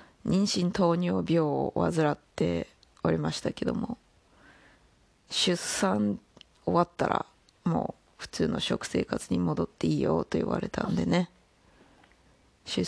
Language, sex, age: Japanese, female, 20-39